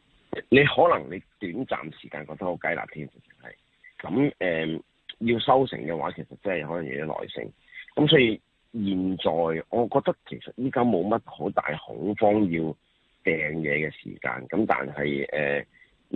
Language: Chinese